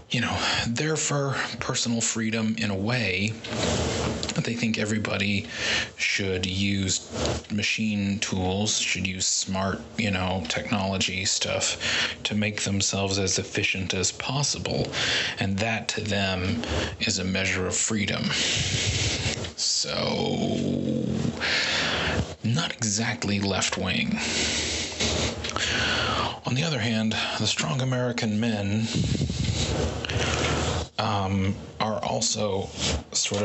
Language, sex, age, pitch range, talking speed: English, male, 30-49, 95-110 Hz, 100 wpm